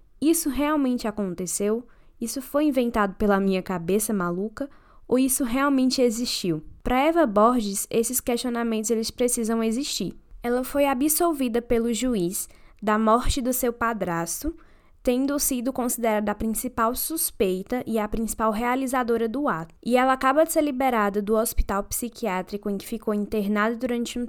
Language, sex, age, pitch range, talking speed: Portuguese, female, 10-29, 210-260 Hz, 145 wpm